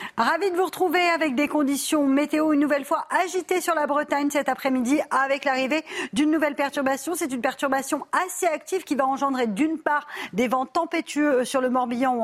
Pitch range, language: 230-295 Hz, French